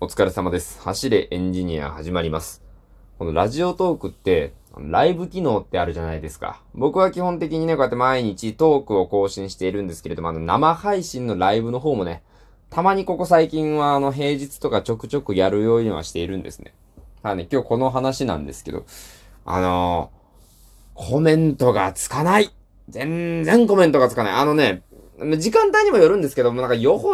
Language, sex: Japanese, male